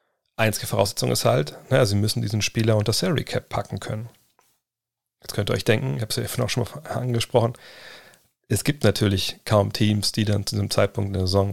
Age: 40-59